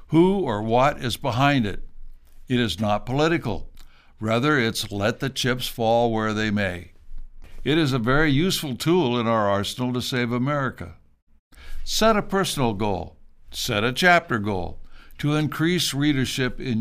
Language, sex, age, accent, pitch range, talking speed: English, male, 60-79, American, 100-140 Hz, 155 wpm